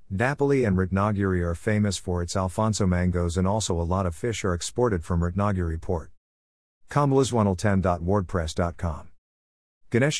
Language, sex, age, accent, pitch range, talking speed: English, male, 50-69, American, 85-115 Hz, 130 wpm